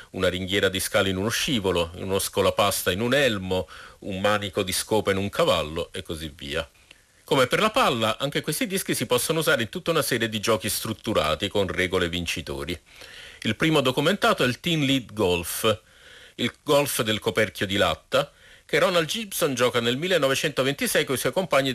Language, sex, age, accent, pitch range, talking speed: Italian, male, 50-69, native, 105-155 Hz, 180 wpm